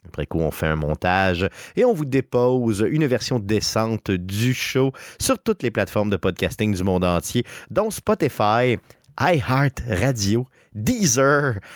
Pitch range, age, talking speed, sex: 95-135 Hz, 30-49, 145 wpm, male